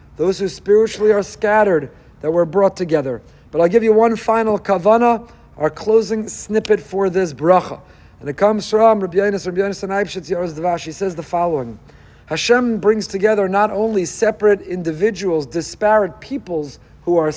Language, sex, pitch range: English, male, 170-215 Hz